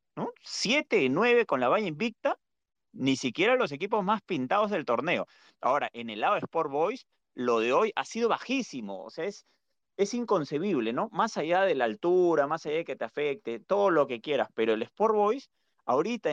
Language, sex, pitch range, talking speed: Spanish, male, 130-210 Hz, 195 wpm